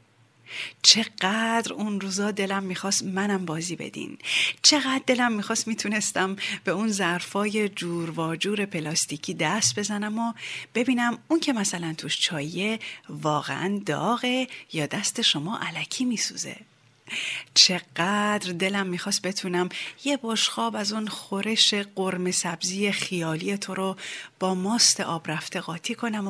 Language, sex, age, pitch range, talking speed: Persian, female, 30-49, 165-225 Hz, 125 wpm